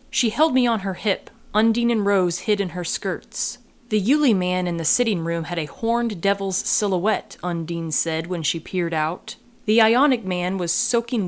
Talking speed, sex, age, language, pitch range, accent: 190 wpm, female, 30-49, English, 170-215 Hz, American